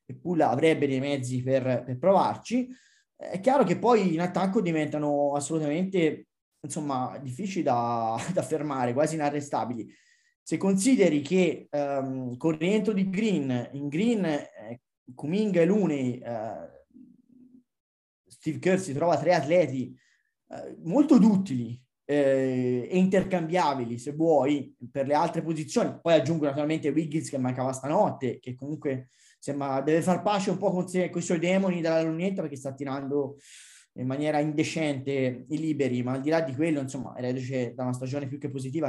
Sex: male